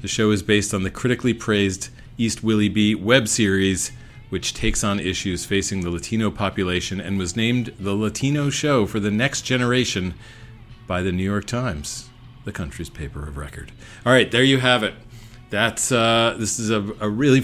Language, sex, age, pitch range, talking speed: English, male, 40-59, 95-120 Hz, 185 wpm